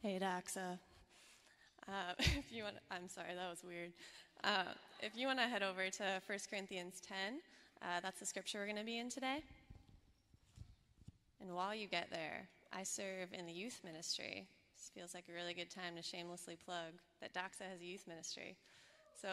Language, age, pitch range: English, 20-39, 175-205 Hz